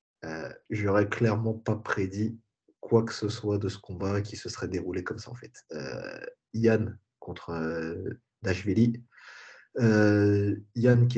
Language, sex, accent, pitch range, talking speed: French, male, French, 100-115 Hz, 150 wpm